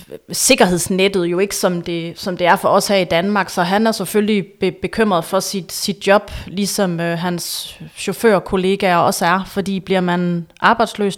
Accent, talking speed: native, 175 wpm